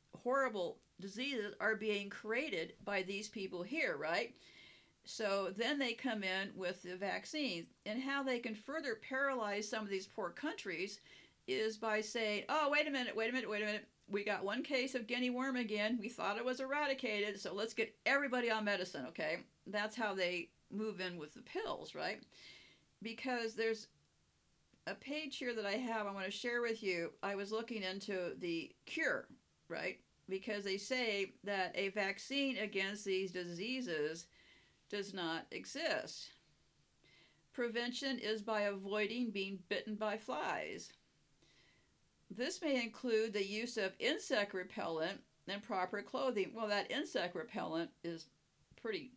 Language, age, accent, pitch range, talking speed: English, 50-69, American, 195-245 Hz, 155 wpm